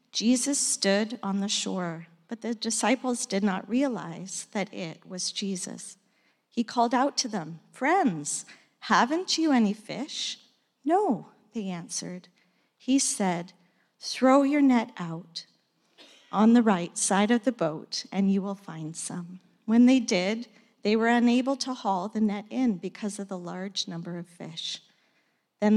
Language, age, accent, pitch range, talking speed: English, 50-69, American, 190-240 Hz, 150 wpm